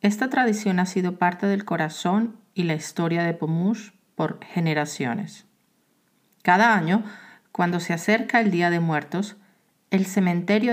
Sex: female